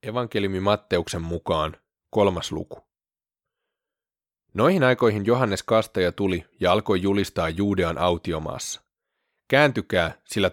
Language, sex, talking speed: Finnish, male, 95 wpm